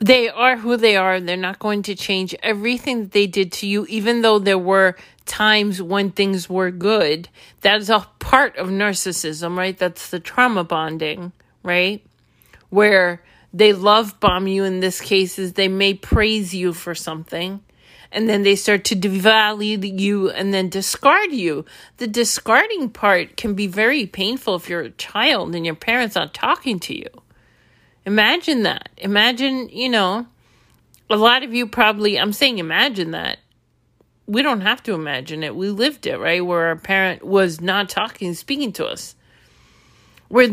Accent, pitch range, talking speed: American, 185-225 Hz, 170 wpm